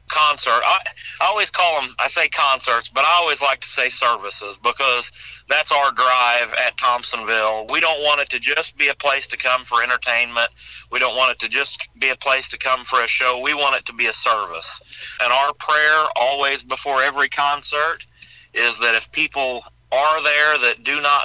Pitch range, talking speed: 120-145 Hz, 205 wpm